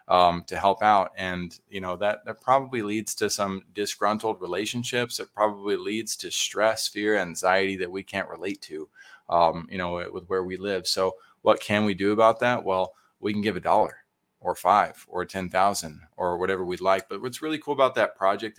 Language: English